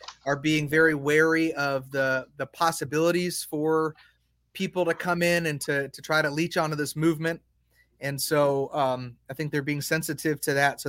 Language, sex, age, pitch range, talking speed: English, male, 30-49, 140-165 Hz, 180 wpm